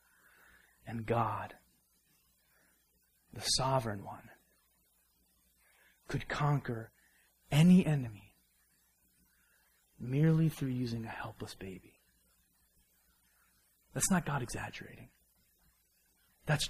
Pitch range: 125-200 Hz